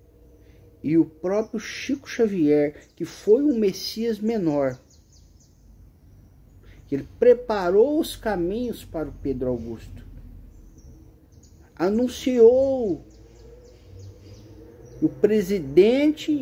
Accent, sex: Brazilian, male